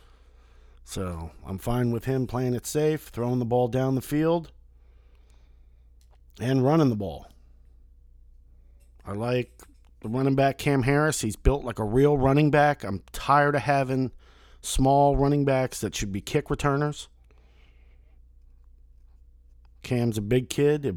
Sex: male